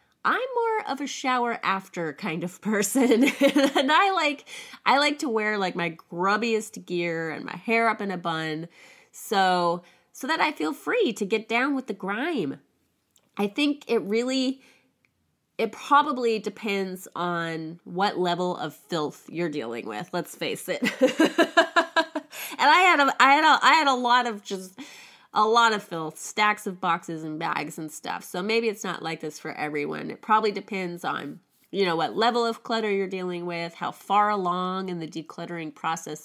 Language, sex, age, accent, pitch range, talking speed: English, female, 20-39, American, 175-260 Hz, 180 wpm